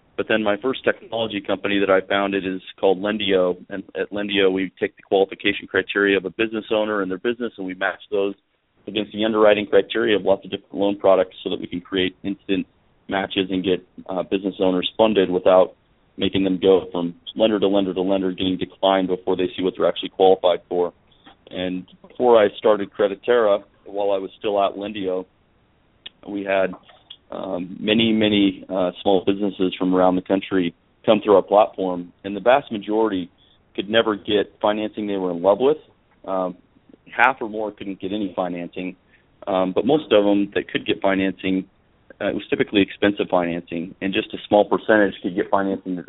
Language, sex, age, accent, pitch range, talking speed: English, male, 40-59, American, 95-105 Hz, 190 wpm